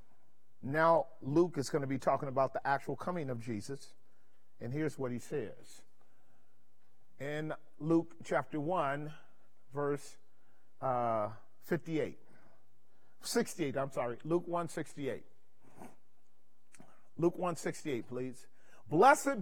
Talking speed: 105 wpm